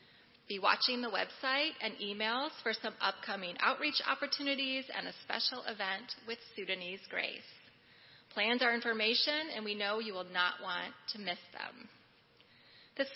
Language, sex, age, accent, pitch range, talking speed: English, female, 30-49, American, 210-270 Hz, 145 wpm